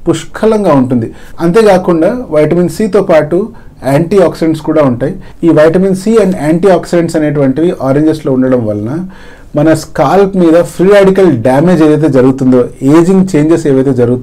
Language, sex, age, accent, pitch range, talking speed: English, male, 40-59, Indian, 140-185 Hz, 65 wpm